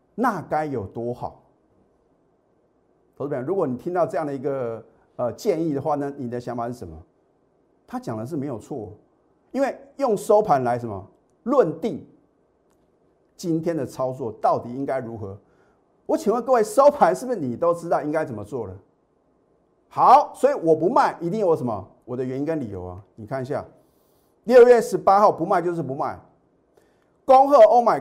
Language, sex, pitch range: Chinese, male, 130-205 Hz